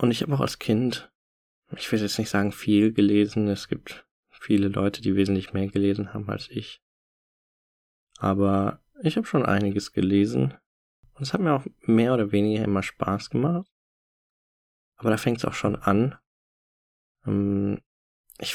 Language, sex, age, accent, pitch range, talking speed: German, male, 20-39, German, 100-115 Hz, 160 wpm